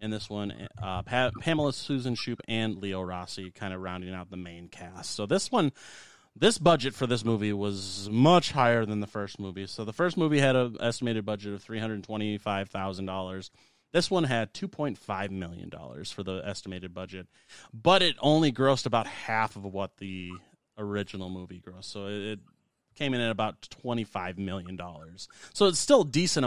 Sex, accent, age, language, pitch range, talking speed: male, American, 30-49, English, 95-120 Hz, 170 wpm